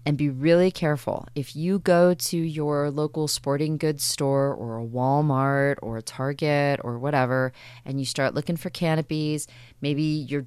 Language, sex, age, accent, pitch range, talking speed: English, female, 20-39, American, 125-150 Hz, 165 wpm